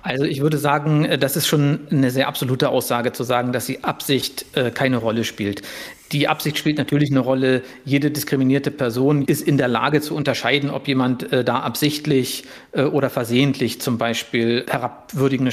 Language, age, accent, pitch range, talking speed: German, 50-69, German, 125-145 Hz, 165 wpm